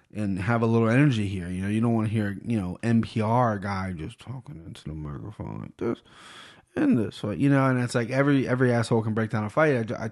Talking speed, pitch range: 250 wpm, 110-130 Hz